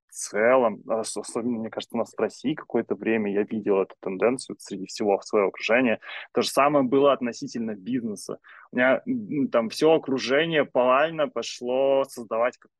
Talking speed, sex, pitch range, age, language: 160 wpm, male, 115-160 Hz, 20-39, Russian